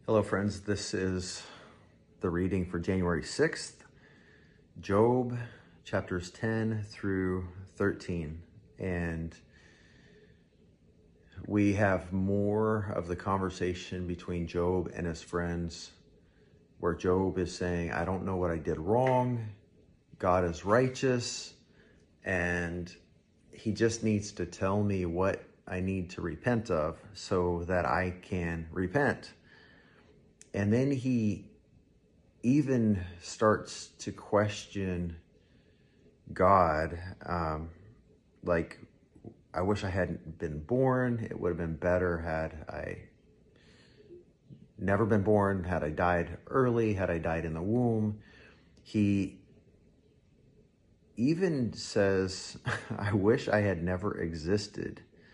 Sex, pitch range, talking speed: male, 85-105 Hz, 110 wpm